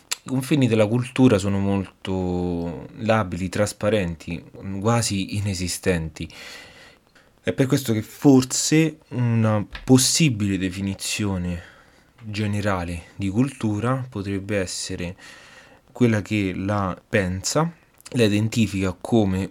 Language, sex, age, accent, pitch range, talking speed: Italian, male, 20-39, native, 95-125 Hz, 90 wpm